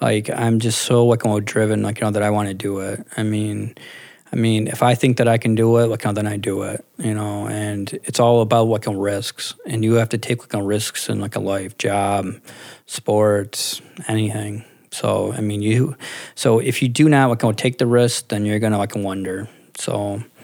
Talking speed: 230 wpm